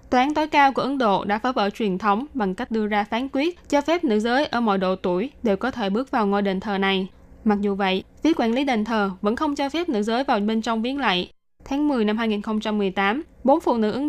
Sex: female